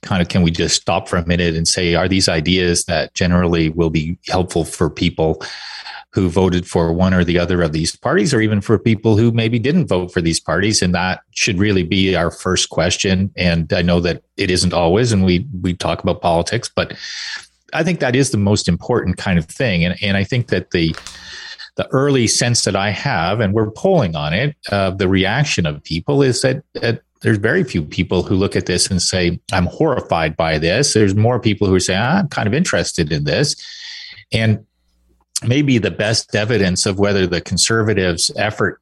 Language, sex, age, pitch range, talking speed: English, male, 40-59, 90-120 Hz, 210 wpm